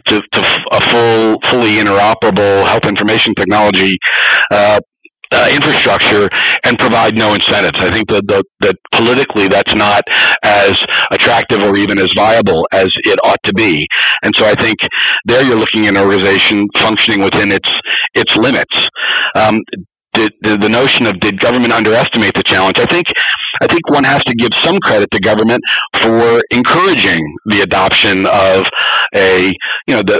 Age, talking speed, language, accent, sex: 40-59, 165 wpm, English, American, male